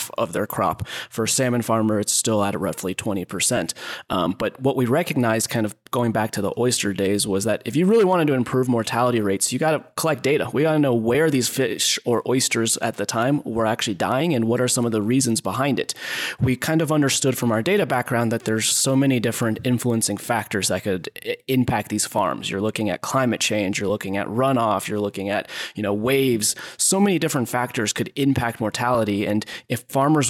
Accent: American